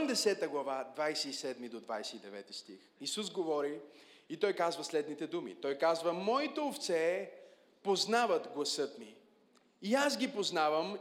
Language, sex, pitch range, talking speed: Bulgarian, male, 165-235 Hz, 120 wpm